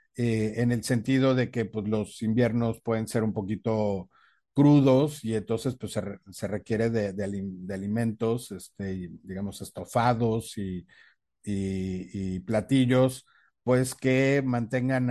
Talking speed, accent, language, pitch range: 140 wpm, Mexican, Spanish, 105-130 Hz